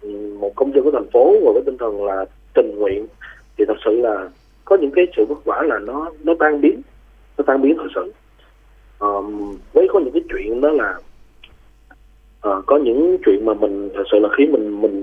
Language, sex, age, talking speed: Vietnamese, male, 20-39, 210 wpm